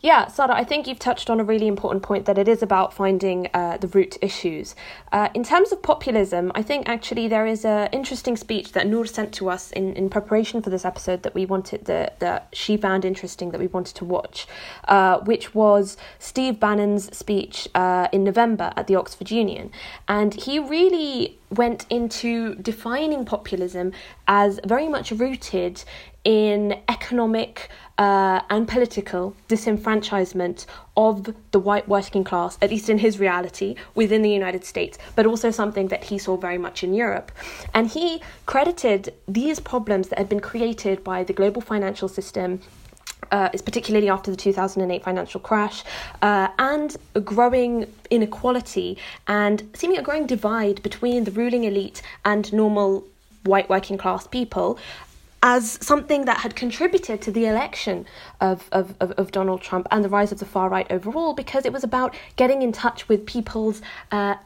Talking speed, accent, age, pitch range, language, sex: 170 wpm, British, 20-39, 195-235 Hz, English, female